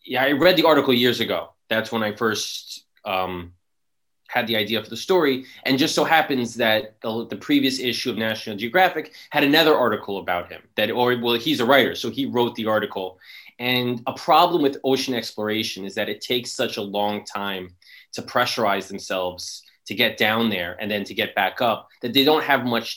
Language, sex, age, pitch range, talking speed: English, male, 20-39, 105-130 Hz, 205 wpm